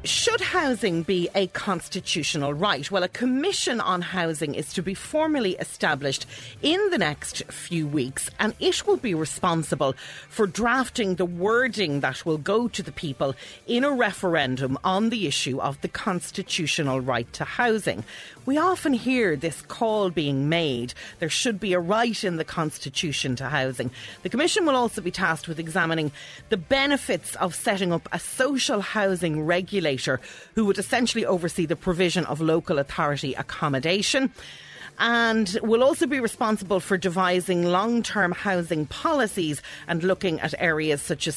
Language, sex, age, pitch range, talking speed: English, female, 40-59, 155-215 Hz, 155 wpm